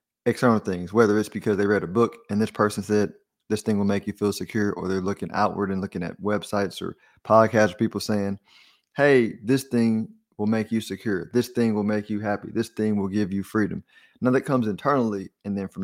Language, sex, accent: English, male, American